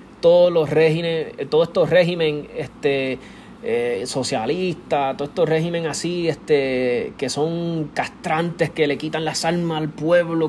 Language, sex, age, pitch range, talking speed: Spanish, male, 20-39, 150-200 Hz, 135 wpm